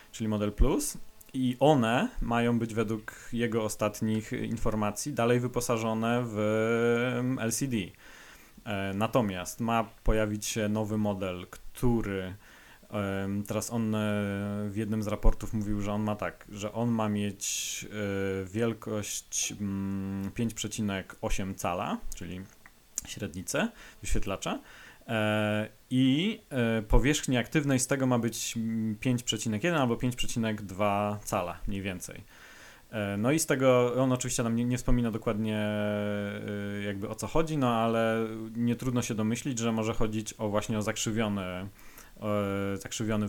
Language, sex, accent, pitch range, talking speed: Polish, male, native, 105-115 Hz, 120 wpm